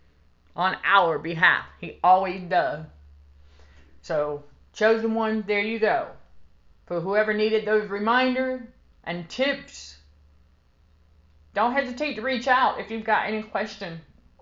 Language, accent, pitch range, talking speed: English, American, 165-225 Hz, 120 wpm